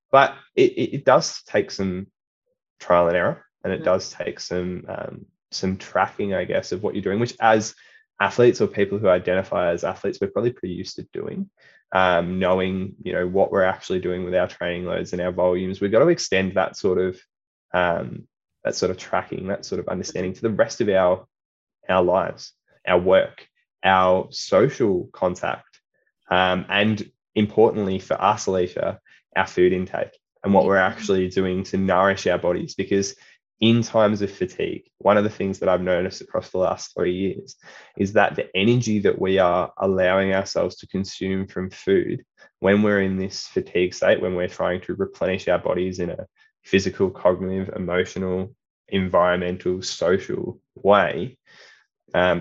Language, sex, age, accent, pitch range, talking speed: English, male, 20-39, Australian, 90-100 Hz, 175 wpm